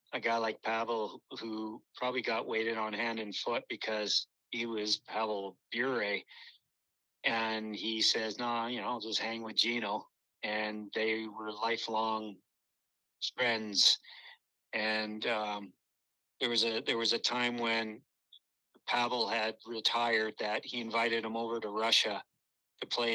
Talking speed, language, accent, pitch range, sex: 145 wpm, English, American, 110-120 Hz, male